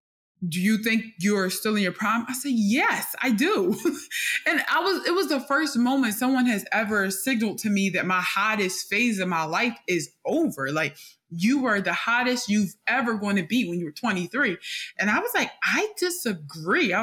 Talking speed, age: 200 wpm, 20-39